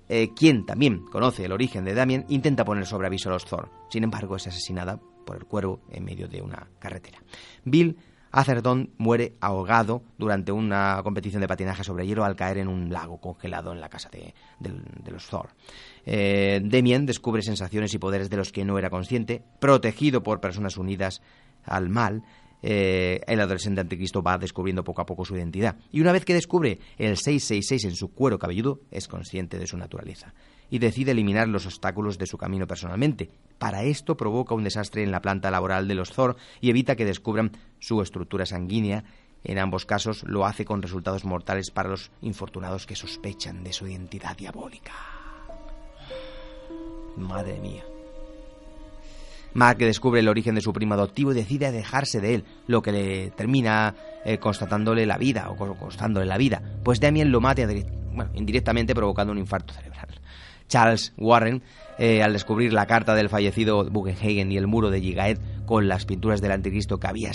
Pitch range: 95-115 Hz